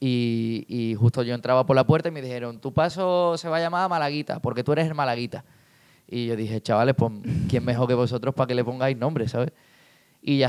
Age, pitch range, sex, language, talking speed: 20-39, 120-145 Hz, male, Spanish, 235 wpm